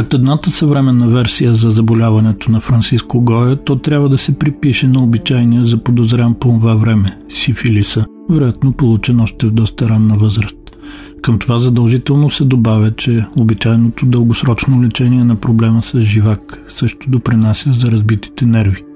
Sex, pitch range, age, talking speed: male, 110-130 Hz, 40-59, 150 wpm